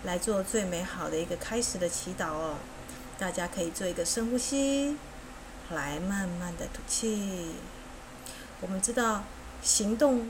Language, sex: Chinese, female